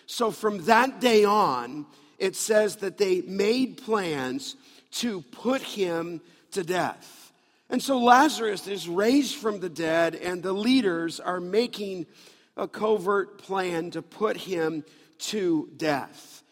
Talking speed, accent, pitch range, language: 135 wpm, American, 185-225 Hz, English